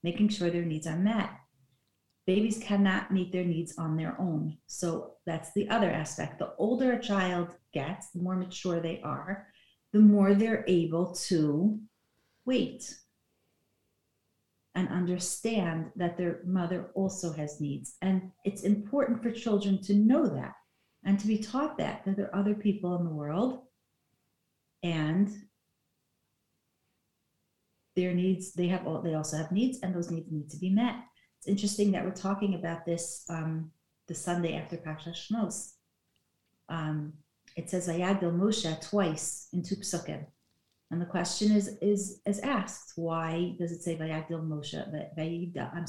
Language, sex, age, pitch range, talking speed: English, female, 50-69, 165-205 Hz, 155 wpm